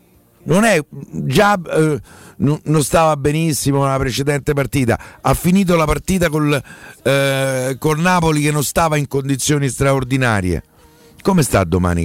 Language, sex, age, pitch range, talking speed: Italian, male, 50-69, 110-160 Hz, 135 wpm